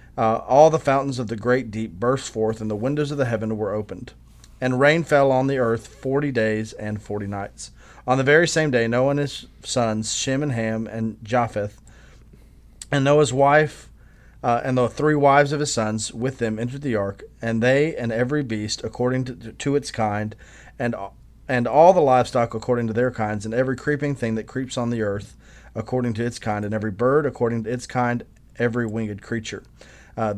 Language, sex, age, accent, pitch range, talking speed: English, male, 30-49, American, 110-135 Hz, 200 wpm